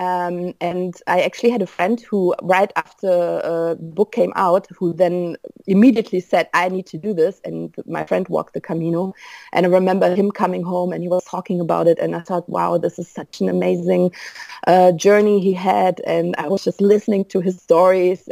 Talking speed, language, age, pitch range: 205 wpm, English, 30-49, 170-205 Hz